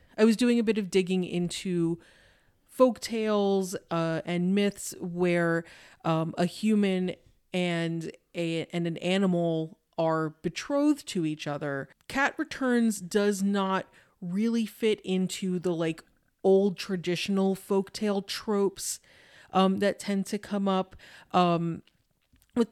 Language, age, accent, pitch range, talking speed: English, 30-49, American, 170-200 Hz, 115 wpm